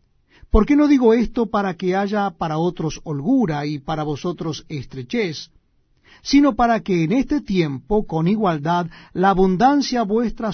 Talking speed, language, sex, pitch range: 150 wpm, Spanish, male, 155-215 Hz